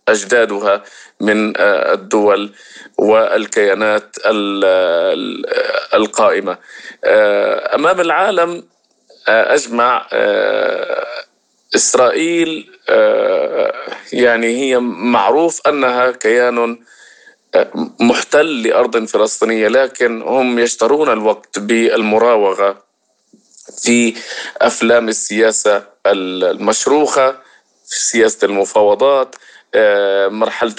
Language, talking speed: Arabic, 60 wpm